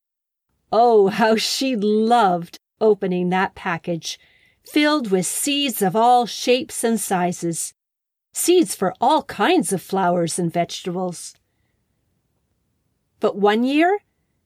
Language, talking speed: English, 110 wpm